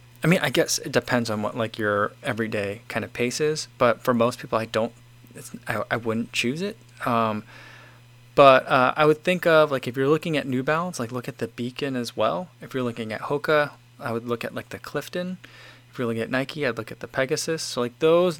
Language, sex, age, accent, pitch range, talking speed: English, male, 20-39, American, 115-145 Hz, 240 wpm